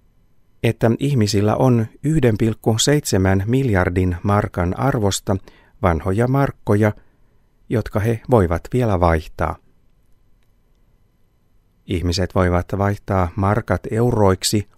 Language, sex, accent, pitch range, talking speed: Finnish, male, native, 90-115 Hz, 75 wpm